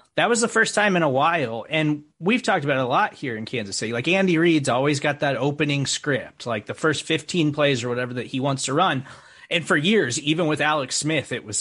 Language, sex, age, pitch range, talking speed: English, male, 30-49, 130-170 Hz, 250 wpm